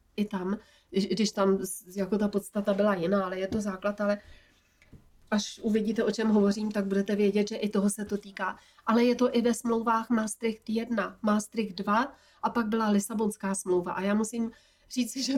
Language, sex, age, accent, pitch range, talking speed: Czech, female, 30-49, native, 200-230 Hz, 185 wpm